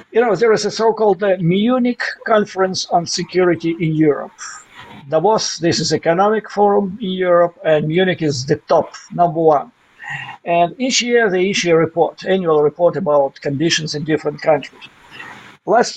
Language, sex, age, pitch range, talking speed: English, male, 50-69, 155-200 Hz, 160 wpm